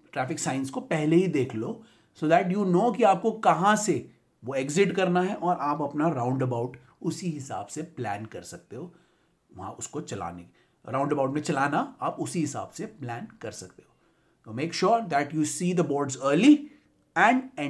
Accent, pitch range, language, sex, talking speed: native, 125-185 Hz, Hindi, male, 65 wpm